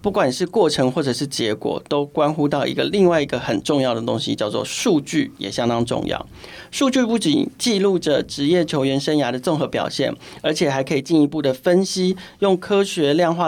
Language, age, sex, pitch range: Chinese, 40-59, male, 135-175 Hz